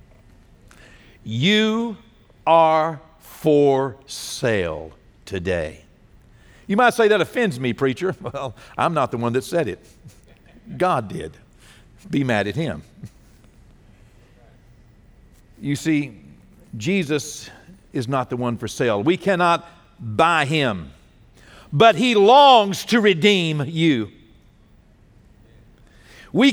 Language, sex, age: English, male, 60-79